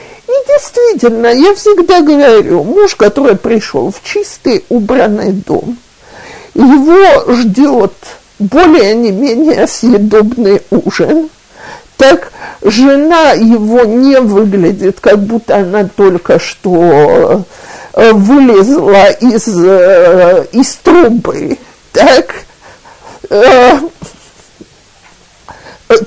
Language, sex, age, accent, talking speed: Russian, male, 50-69, native, 75 wpm